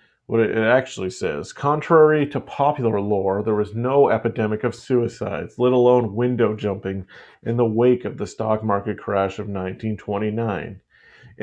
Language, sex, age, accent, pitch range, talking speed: English, male, 30-49, American, 105-135 Hz, 145 wpm